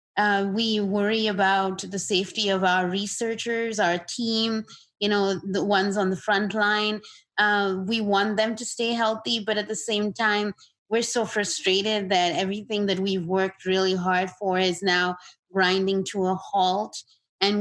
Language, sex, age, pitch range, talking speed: English, female, 20-39, 185-215 Hz, 165 wpm